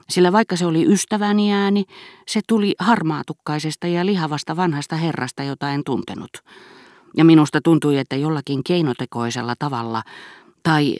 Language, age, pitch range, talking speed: Finnish, 40-59, 125-170 Hz, 130 wpm